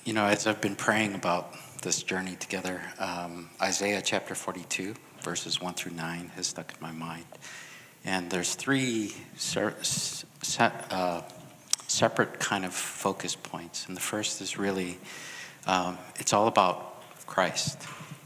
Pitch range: 85-105 Hz